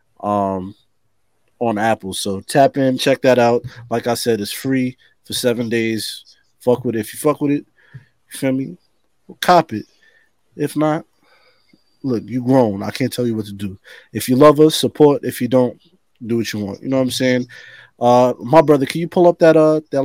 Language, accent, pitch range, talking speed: English, American, 115-135 Hz, 205 wpm